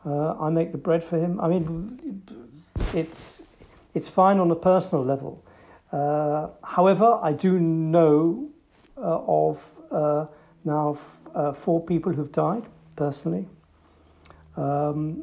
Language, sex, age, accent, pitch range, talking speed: English, male, 60-79, British, 145-170 Hz, 130 wpm